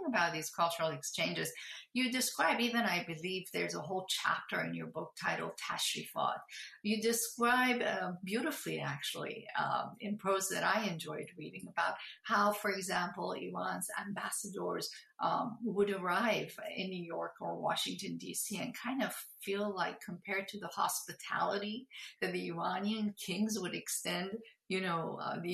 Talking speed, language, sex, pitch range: 150 wpm, English, female, 185-230 Hz